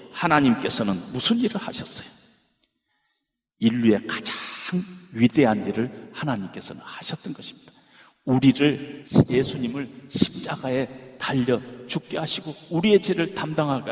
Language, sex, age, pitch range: Korean, male, 40-59, 115-175 Hz